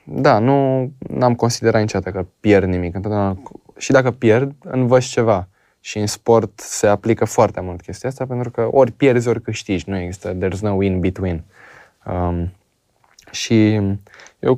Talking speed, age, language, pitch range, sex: 150 wpm, 20-39, Romanian, 95-115 Hz, male